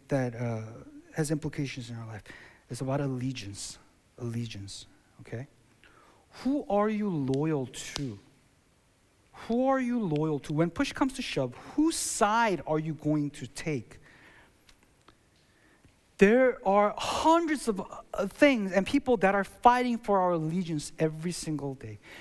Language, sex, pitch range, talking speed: English, male, 150-245 Hz, 140 wpm